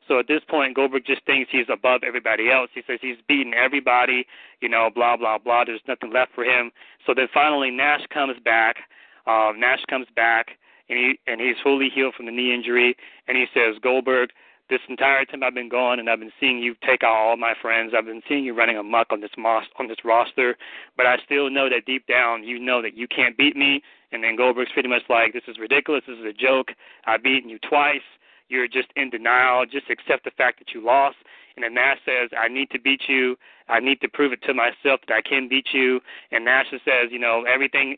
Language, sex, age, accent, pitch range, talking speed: English, male, 30-49, American, 120-135 Hz, 235 wpm